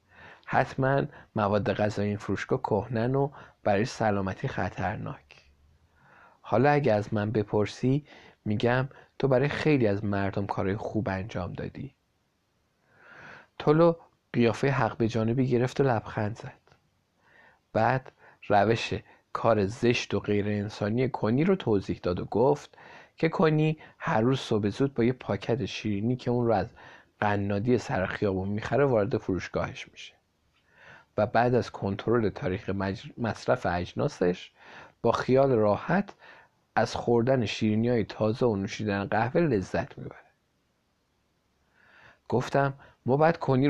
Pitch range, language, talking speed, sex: 100-130 Hz, Persian, 125 wpm, male